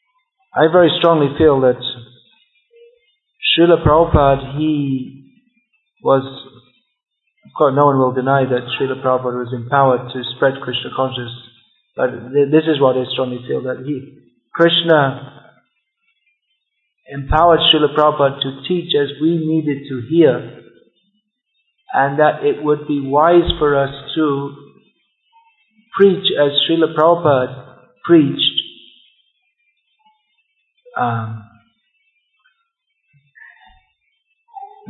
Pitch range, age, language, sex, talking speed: 130-200 Hz, 50-69, English, male, 100 wpm